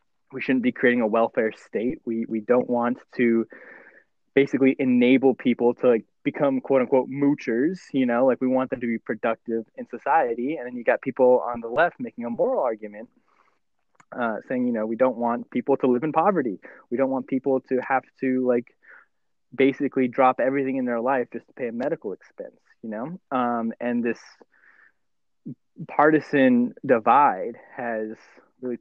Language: English